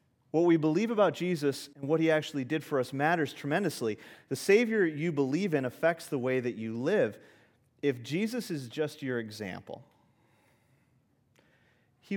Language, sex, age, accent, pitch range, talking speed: English, male, 40-59, American, 115-145 Hz, 160 wpm